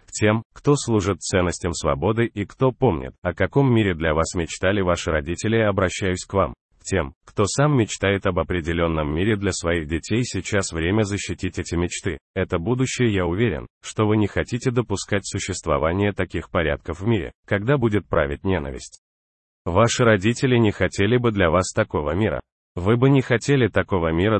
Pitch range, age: 85-110 Hz, 30-49